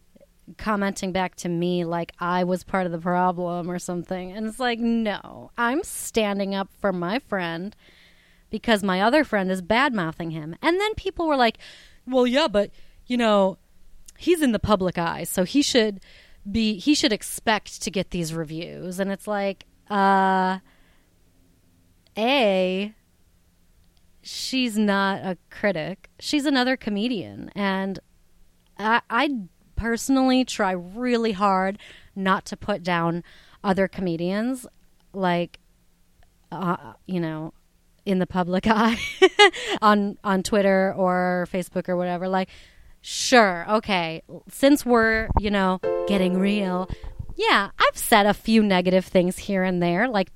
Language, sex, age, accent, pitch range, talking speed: English, female, 30-49, American, 180-225 Hz, 140 wpm